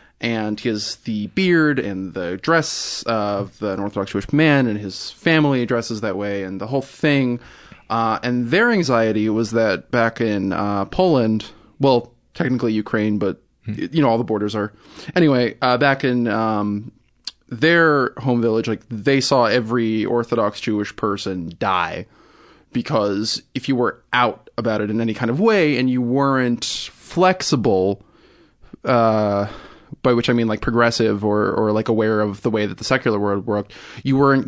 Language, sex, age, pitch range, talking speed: English, male, 20-39, 105-125 Hz, 165 wpm